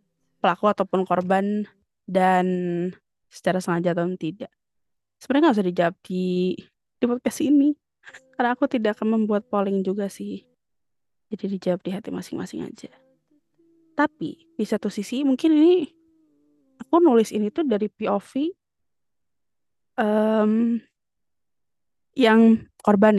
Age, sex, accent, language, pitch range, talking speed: 20-39, female, native, Indonesian, 190-255 Hz, 115 wpm